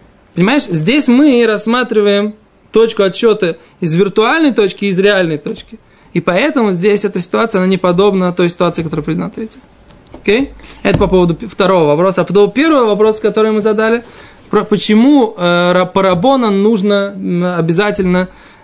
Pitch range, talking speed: 170-215 Hz, 145 wpm